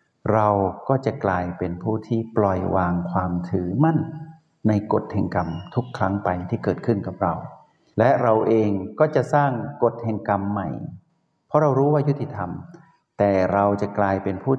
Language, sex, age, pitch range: Thai, male, 60-79, 100-130 Hz